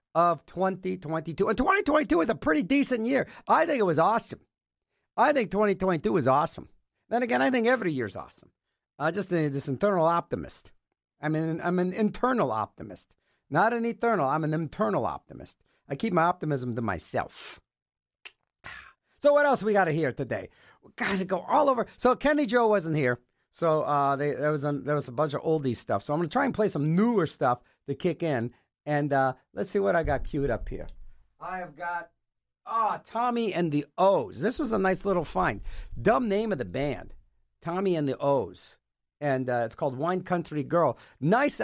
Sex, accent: male, American